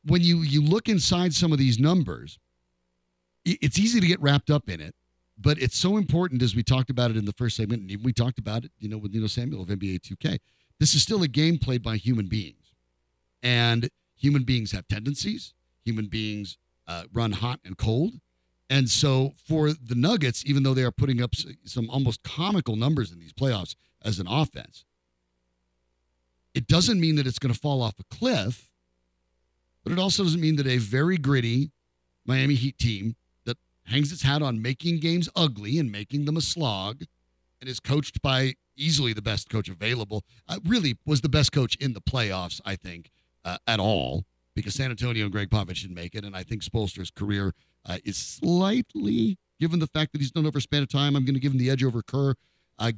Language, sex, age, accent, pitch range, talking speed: English, male, 40-59, American, 100-145 Hz, 205 wpm